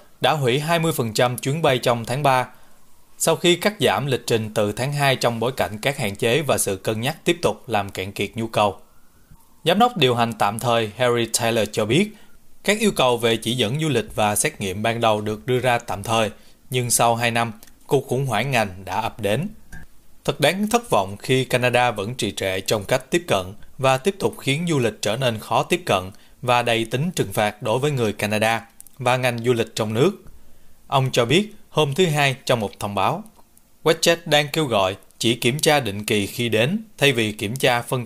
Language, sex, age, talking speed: Vietnamese, male, 20-39, 220 wpm